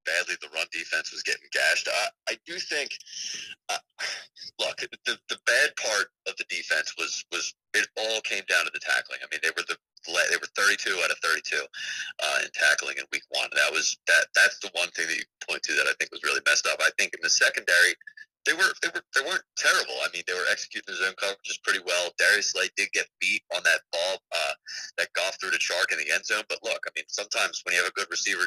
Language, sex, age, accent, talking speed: English, male, 30-49, American, 250 wpm